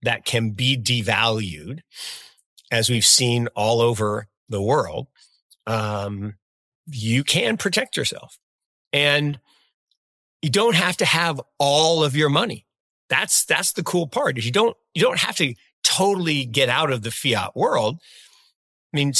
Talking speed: 145 wpm